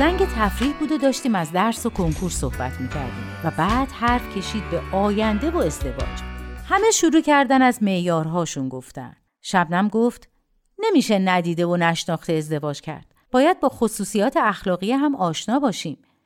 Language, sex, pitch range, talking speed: Persian, female, 180-275 Hz, 150 wpm